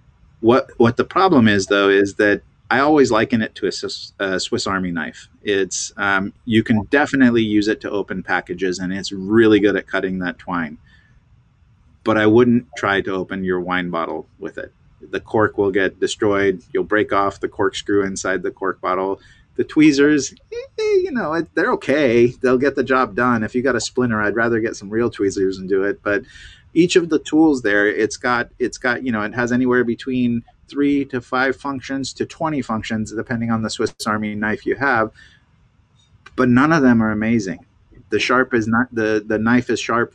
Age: 30-49